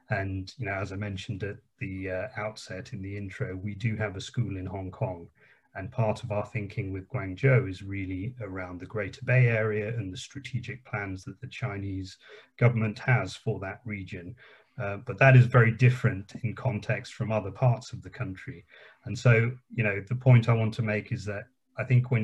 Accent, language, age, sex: British, English, 30-49, male